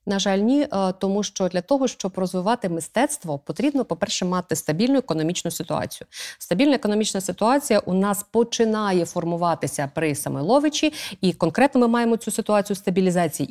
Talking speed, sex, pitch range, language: 140 wpm, female, 155-205 Hz, Ukrainian